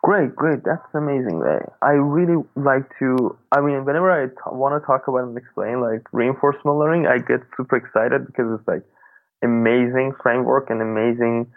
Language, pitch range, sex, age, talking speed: English, 120-140 Hz, male, 20-39, 180 wpm